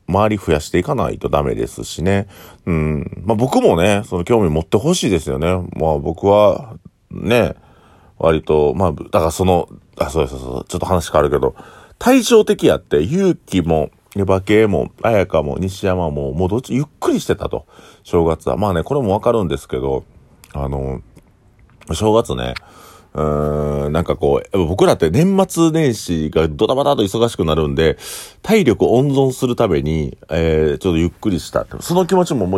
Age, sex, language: 40-59, male, Japanese